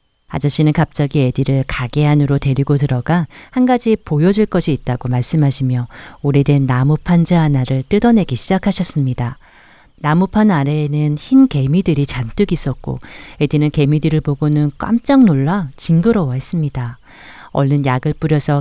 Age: 40-59